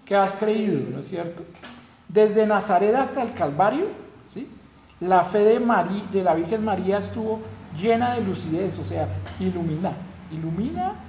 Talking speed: 150 wpm